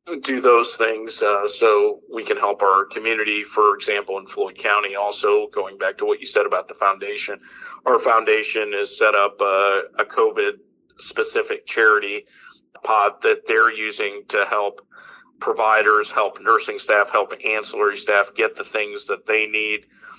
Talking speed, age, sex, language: 160 wpm, 50-69, male, English